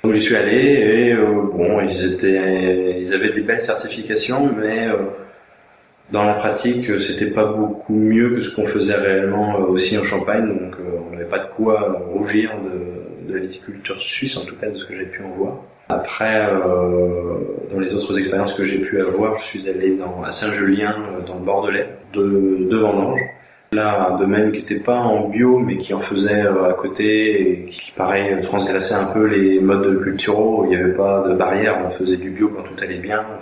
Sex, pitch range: male, 95-105 Hz